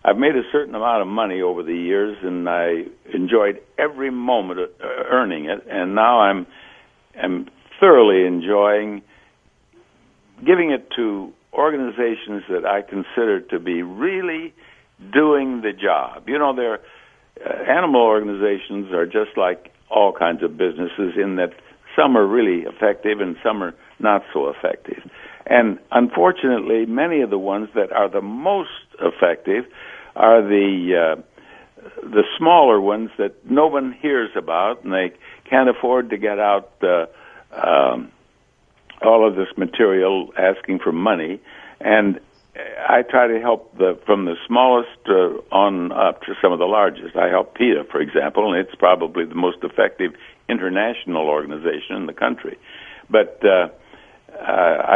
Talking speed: 145 wpm